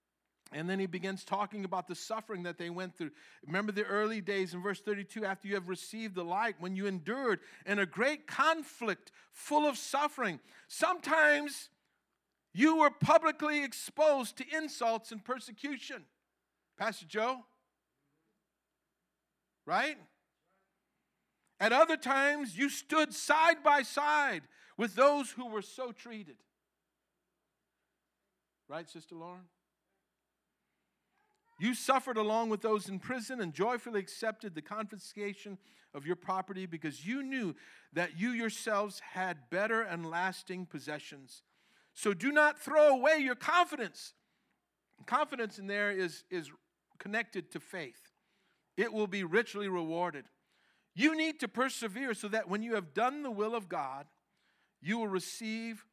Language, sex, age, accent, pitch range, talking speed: English, male, 50-69, American, 185-260 Hz, 135 wpm